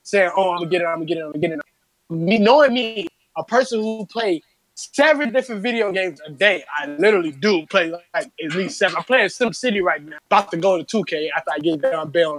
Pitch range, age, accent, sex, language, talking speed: 165-220 Hz, 20-39, American, male, English, 255 wpm